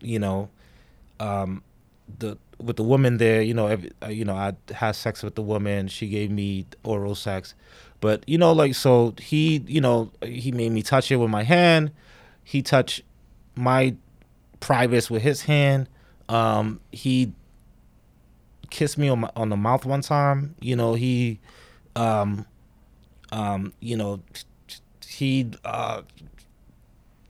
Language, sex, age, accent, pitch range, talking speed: English, male, 30-49, American, 105-130 Hz, 145 wpm